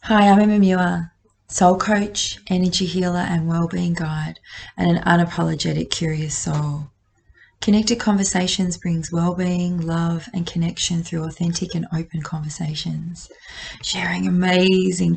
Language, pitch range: English, 165-180 Hz